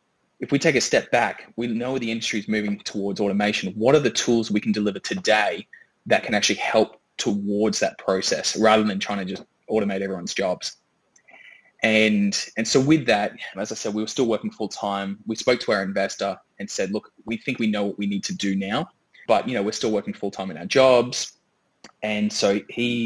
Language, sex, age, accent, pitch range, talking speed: English, male, 20-39, Australian, 100-110 Hz, 215 wpm